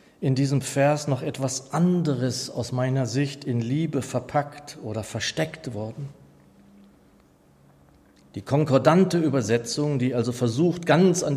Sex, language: male, German